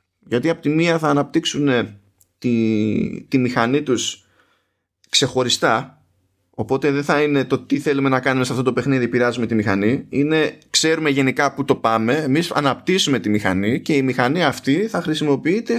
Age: 20-39